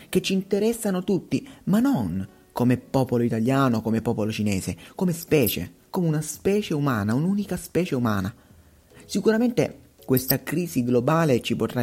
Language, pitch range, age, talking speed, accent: Italian, 110-165 Hz, 30-49, 135 wpm, native